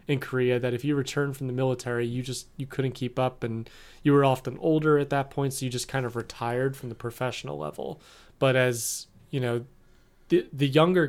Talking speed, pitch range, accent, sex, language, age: 215 wpm, 120-140 Hz, American, male, English, 20-39